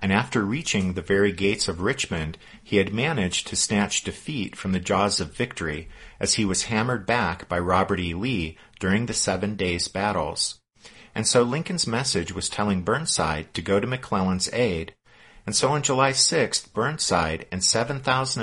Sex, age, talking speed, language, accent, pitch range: male, 50-69, 175 wpm, English, American, 90-110 Hz